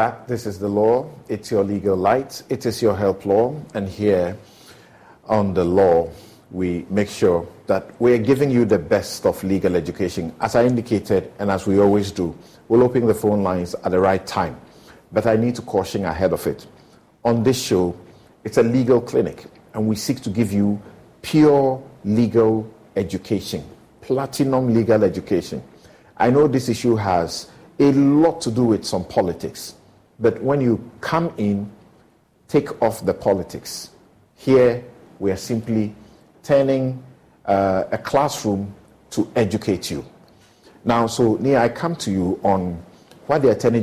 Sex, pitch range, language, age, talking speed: male, 100-130 Hz, English, 50-69, 160 wpm